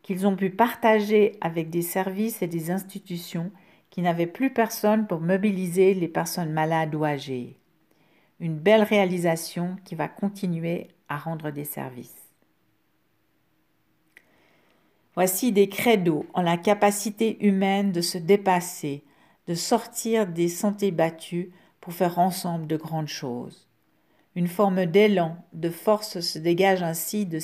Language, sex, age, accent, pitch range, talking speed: French, female, 50-69, French, 170-200 Hz, 135 wpm